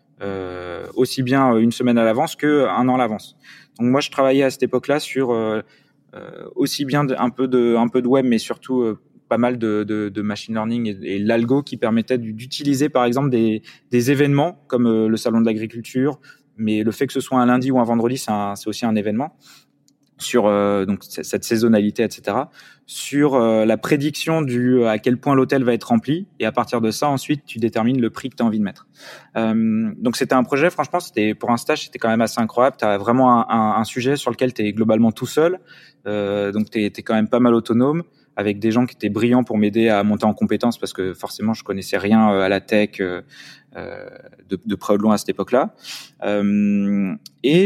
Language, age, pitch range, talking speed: French, 20-39, 110-135 Hz, 225 wpm